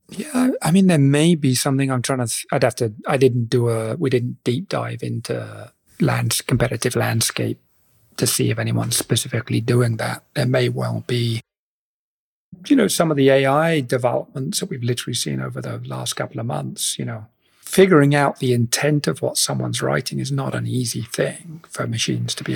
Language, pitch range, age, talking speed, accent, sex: English, 115-140 Hz, 40-59, 190 wpm, British, male